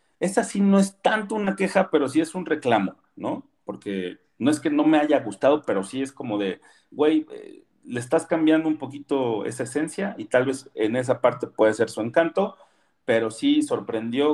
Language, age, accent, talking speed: Spanish, 40-59, Mexican, 195 wpm